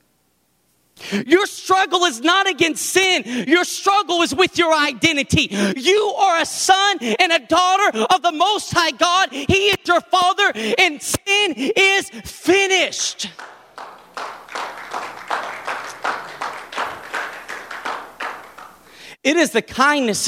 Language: English